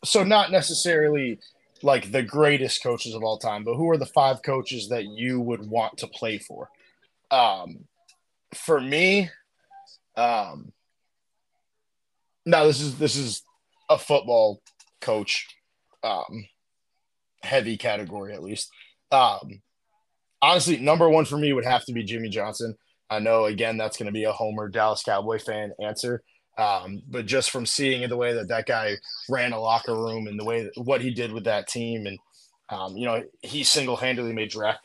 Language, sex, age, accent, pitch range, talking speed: English, male, 20-39, American, 115-150 Hz, 170 wpm